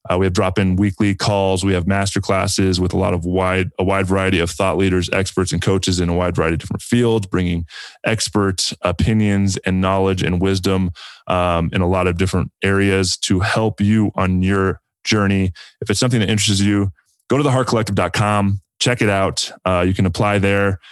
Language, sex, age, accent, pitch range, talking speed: English, male, 20-39, American, 90-100 Hz, 200 wpm